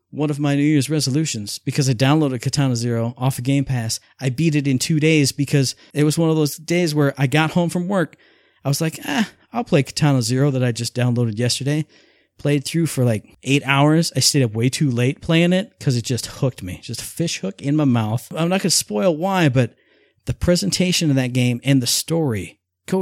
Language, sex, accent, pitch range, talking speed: English, male, American, 120-155 Hz, 235 wpm